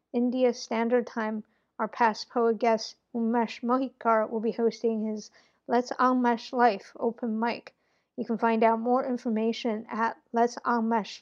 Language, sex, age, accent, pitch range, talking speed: English, female, 50-69, American, 220-240 Hz, 145 wpm